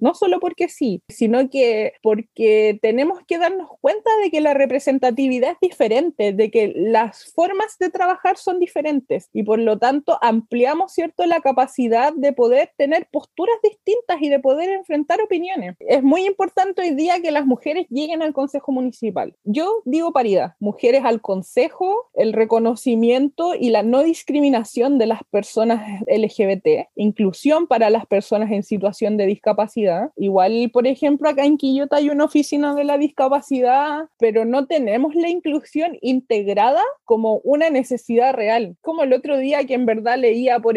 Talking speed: 160 wpm